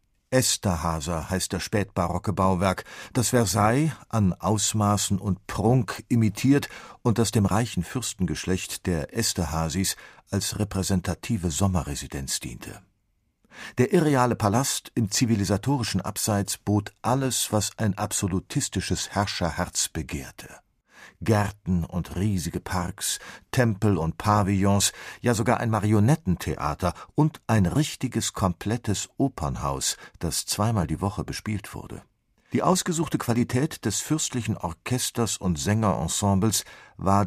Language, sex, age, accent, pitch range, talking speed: German, male, 50-69, German, 95-115 Hz, 110 wpm